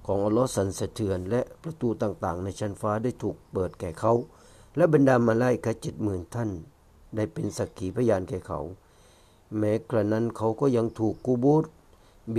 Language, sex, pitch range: Thai, male, 95-120 Hz